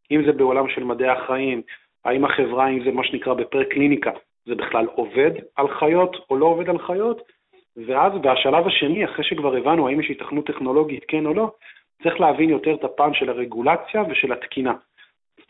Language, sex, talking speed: Hebrew, male, 180 wpm